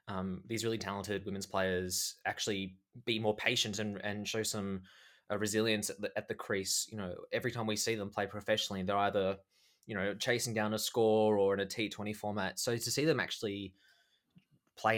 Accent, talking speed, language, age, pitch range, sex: Australian, 195 wpm, English, 20-39, 95-115 Hz, male